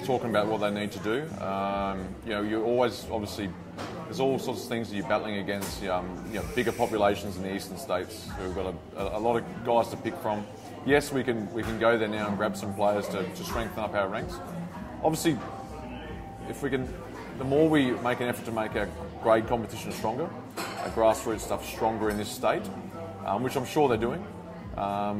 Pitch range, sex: 100-115 Hz, male